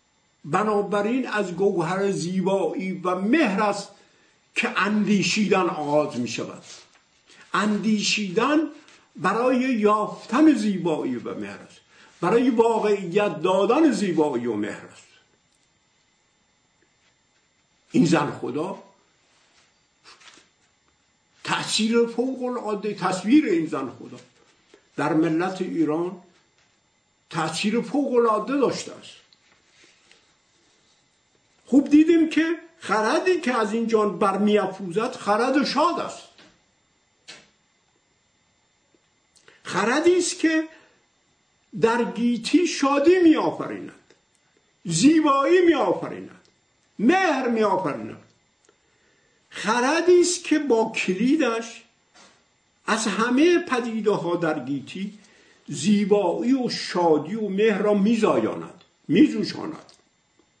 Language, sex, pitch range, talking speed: Persian, male, 190-270 Hz, 80 wpm